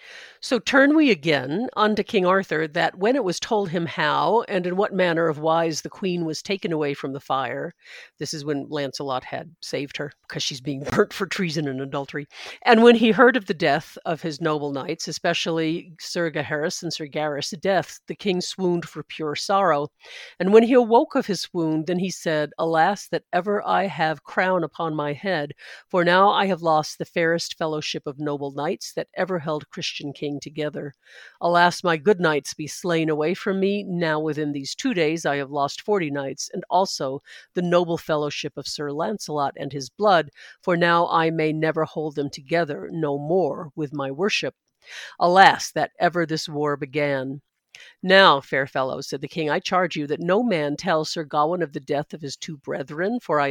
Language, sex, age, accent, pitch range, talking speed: English, female, 50-69, American, 145-180 Hz, 200 wpm